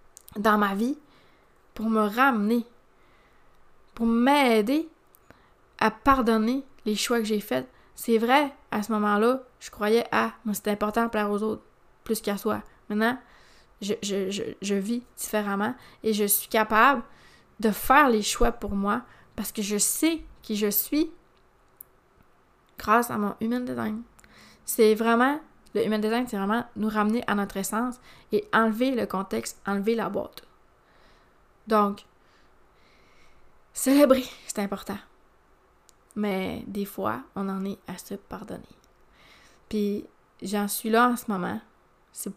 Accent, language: Canadian, French